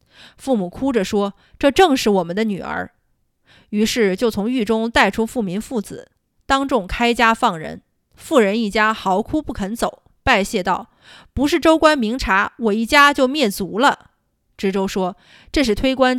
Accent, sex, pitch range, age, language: native, female, 195-260 Hz, 20-39, Chinese